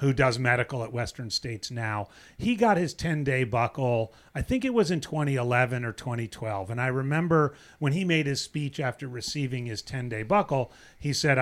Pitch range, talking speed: 125-160 Hz, 185 wpm